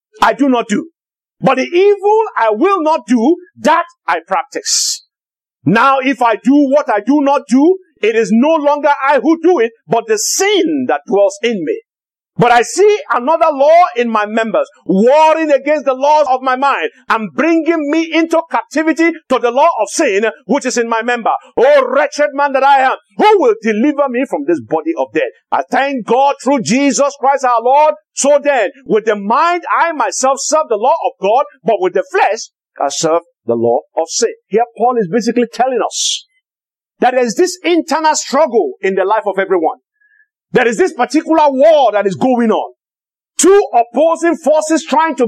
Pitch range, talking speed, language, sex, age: 230-330 Hz, 190 wpm, English, male, 50-69